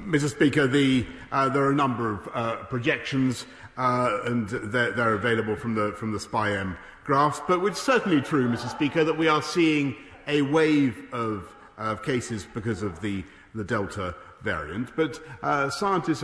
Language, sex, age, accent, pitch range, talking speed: English, male, 50-69, British, 120-170 Hz, 170 wpm